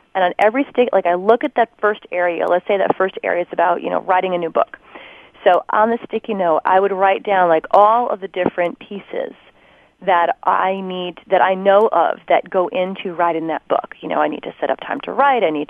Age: 30-49